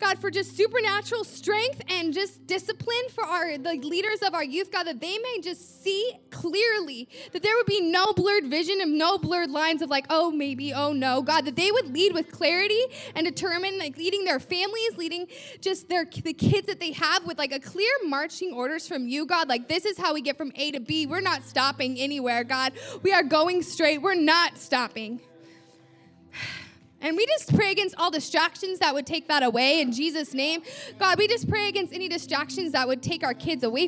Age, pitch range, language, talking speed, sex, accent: 10-29, 270-365 Hz, English, 210 wpm, female, American